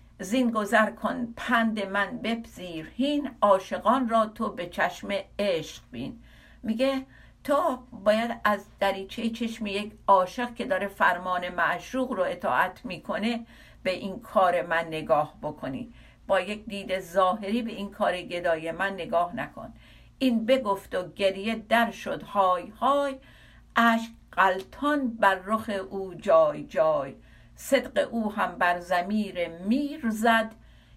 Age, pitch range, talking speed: 60-79, 195-245 Hz, 130 wpm